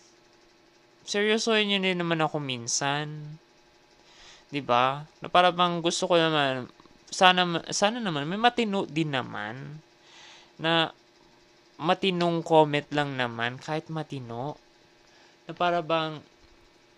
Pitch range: 120-170 Hz